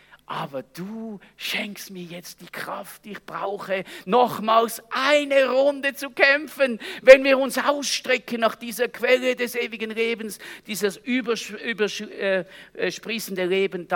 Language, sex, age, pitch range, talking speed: German, male, 50-69, 165-255 Hz, 120 wpm